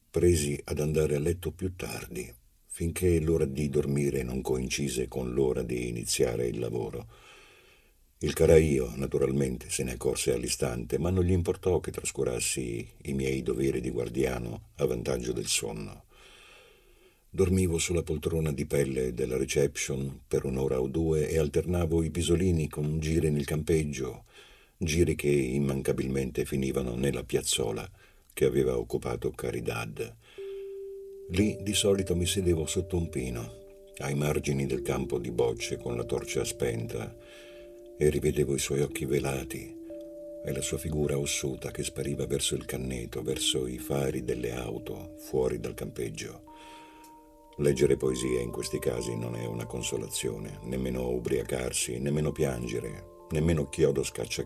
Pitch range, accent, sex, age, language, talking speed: 65-90 Hz, native, male, 50-69, Italian, 140 wpm